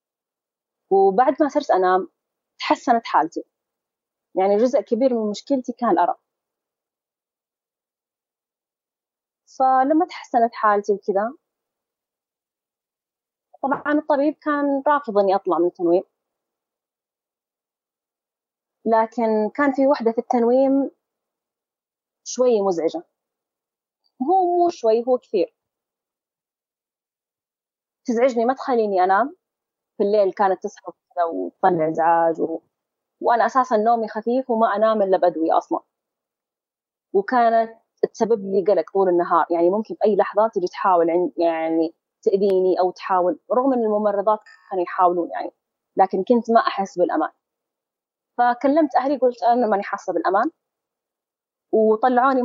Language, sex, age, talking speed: Arabic, female, 20-39, 110 wpm